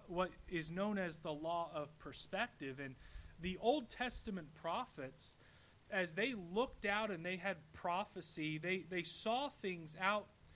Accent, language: American, English